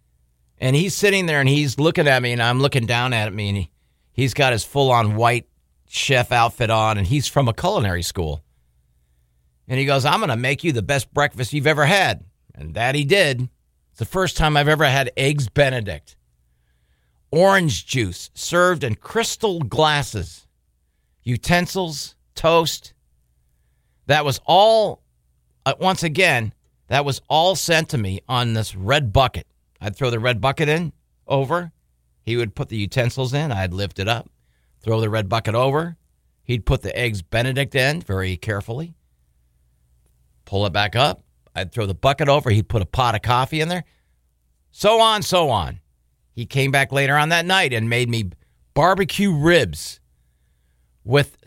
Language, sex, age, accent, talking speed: English, male, 50-69, American, 170 wpm